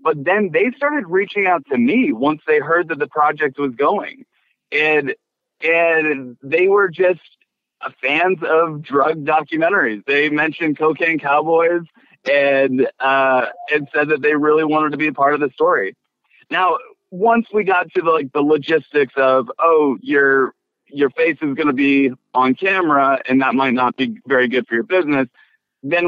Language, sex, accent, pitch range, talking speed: English, male, American, 135-205 Hz, 175 wpm